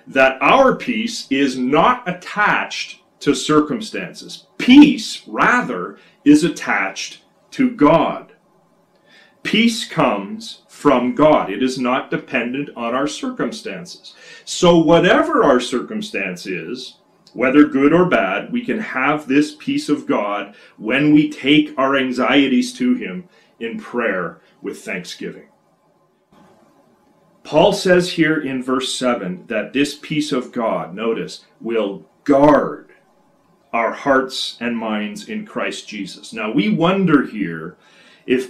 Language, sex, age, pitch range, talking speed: English, male, 40-59, 130-215 Hz, 120 wpm